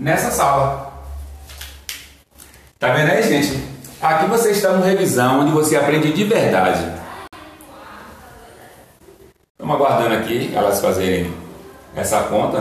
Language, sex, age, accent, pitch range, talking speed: Portuguese, male, 40-59, Brazilian, 105-165 Hz, 115 wpm